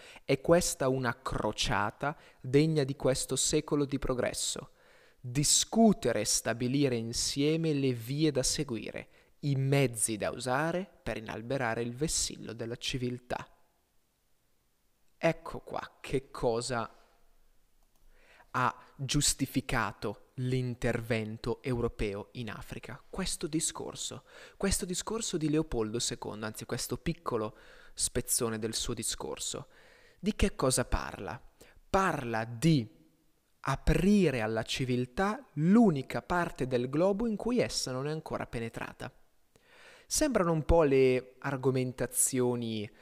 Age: 20-39